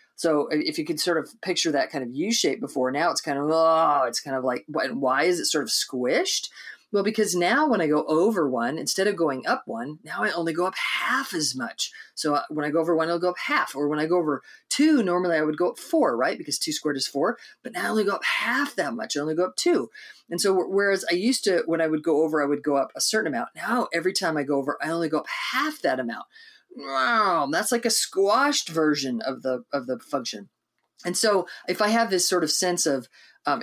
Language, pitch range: English, 150-220 Hz